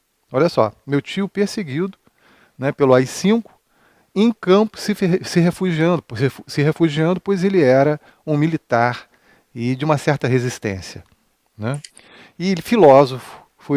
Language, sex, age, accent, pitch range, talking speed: Portuguese, male, 40-59, Brazilian, 125-160 Hz, 130 wpm